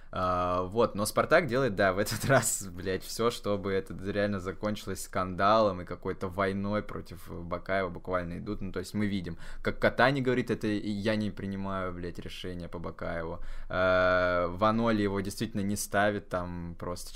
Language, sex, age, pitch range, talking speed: Russian, male, 20-39, 95-115 Hz, 165 wpm